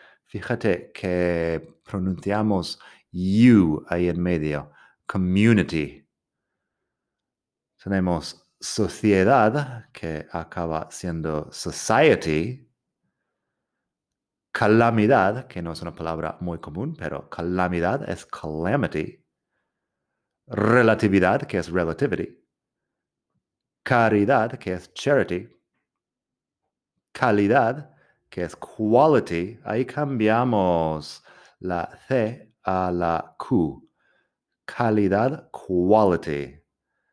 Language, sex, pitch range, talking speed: Spanish, male, 85-115 Hz, 75 wpm